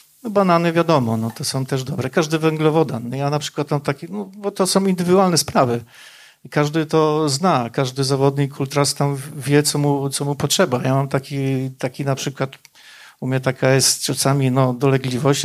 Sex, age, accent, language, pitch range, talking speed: male, 50-69, native, Polish, 135-160 Hz, 185 wpm